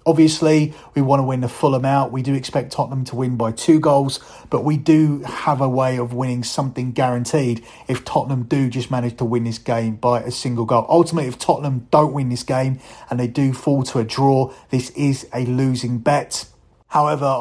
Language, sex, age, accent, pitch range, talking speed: English, male, 30-49, British, 125-145 Hz, 205 wpm